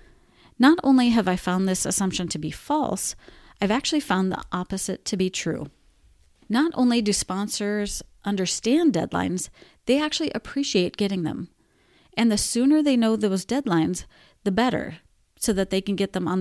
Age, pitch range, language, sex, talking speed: 30-49, 180-230 Hz, English, female, 165 wpm